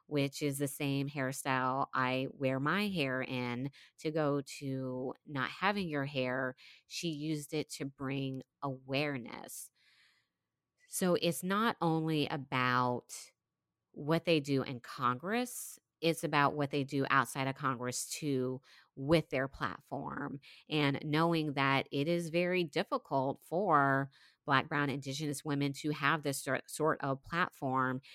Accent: American